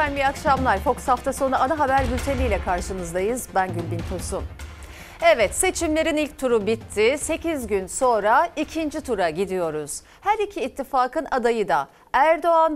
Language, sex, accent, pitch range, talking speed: Turkish, female, native, 225-320 Hz, 140 wpm